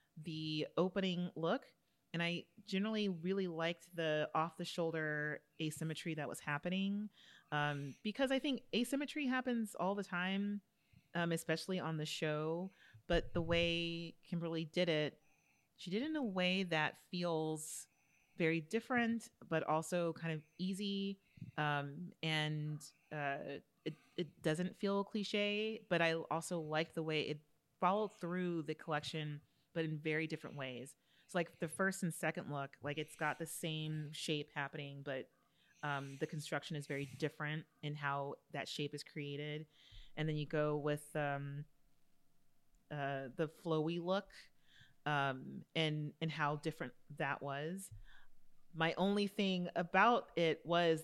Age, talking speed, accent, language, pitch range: 30-49, 145 wpm, American, English, 150-185 Hz